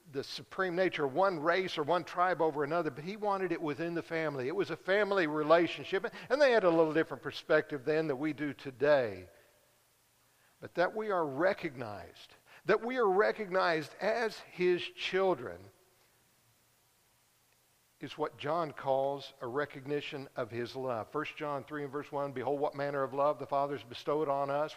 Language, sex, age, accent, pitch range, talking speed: English, male, 60-79, American, 135-180 Hz, 175 wpm